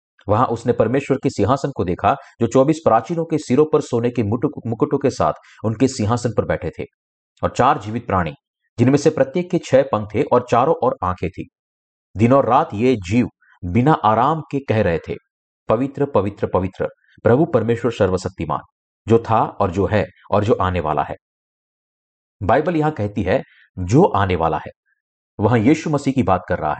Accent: native